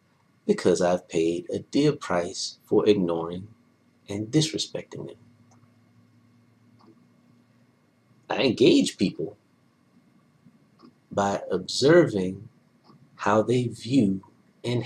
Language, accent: English, American